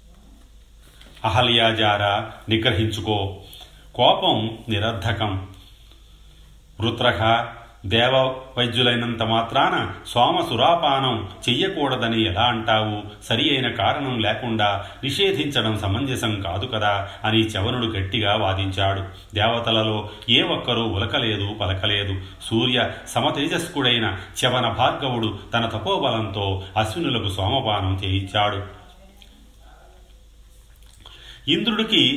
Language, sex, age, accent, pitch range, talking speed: Telugu, male, 40-59, native, 100-120 Hz, 70 wpm